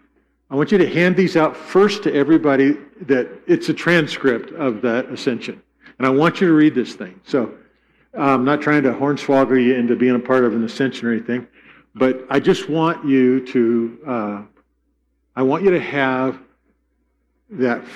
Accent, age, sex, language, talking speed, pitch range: American, 50-69, male, English, 180 wpm, 120-165 Hz